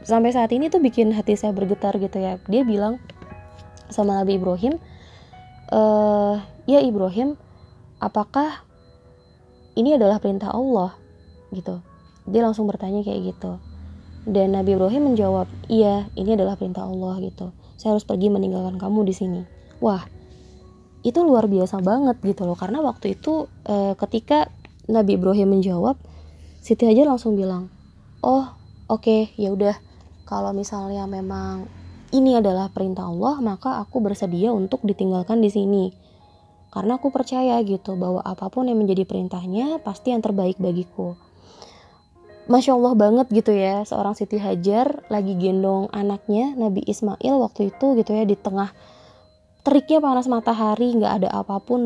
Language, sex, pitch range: Indonesian, female, 190-235 Hz